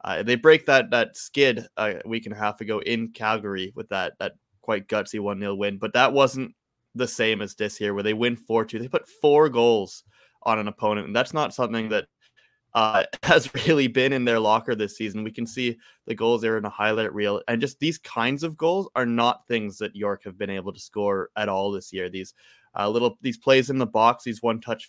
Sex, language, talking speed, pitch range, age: male, English, 230 wpm, 105-125 Hz, 20-39